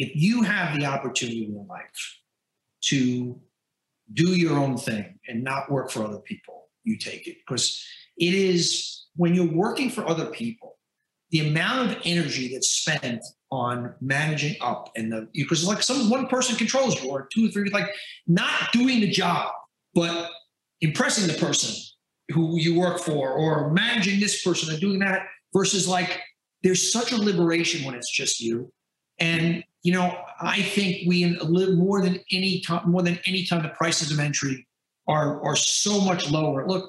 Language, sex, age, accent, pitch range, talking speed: English, male, 50-69, American, 150-195 Hz, 175 wpm